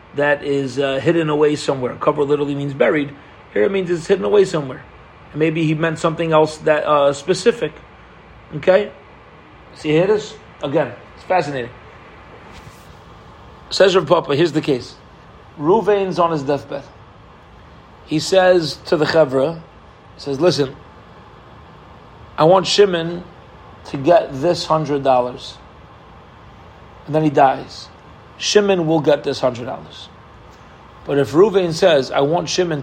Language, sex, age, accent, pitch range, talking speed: English, male, 40-59, American, 135-165 Hz, 135 wpm